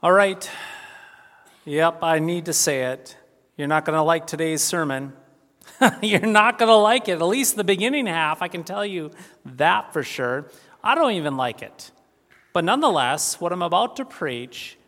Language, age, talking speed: English, 40-59, 180 wpm